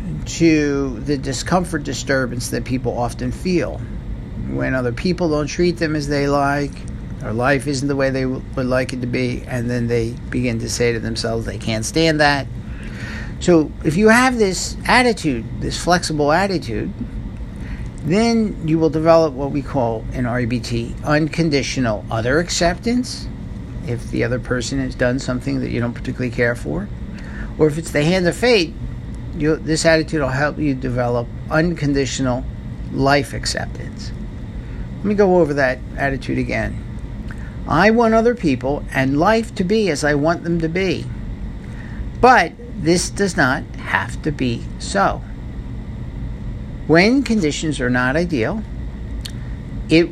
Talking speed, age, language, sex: 150 wpm, 50-69, English, male